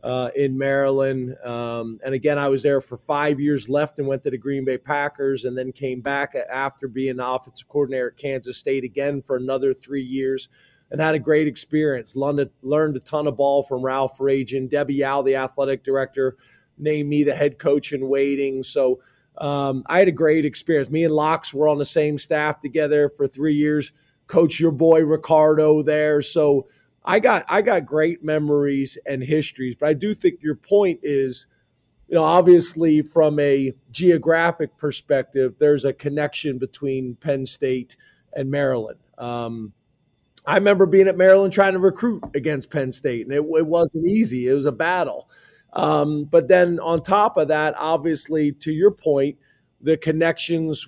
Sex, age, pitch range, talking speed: male, 30-49, 135-155 Hz, 180 wpm